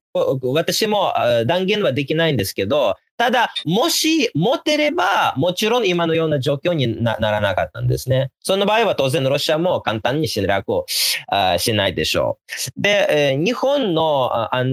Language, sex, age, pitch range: Japanese, male, 30-49, 145-240 Hz